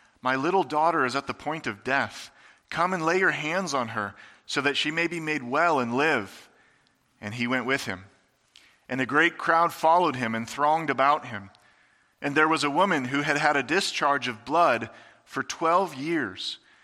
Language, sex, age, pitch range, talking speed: English, male, 40-59, 130-165 Hz, 195 wpm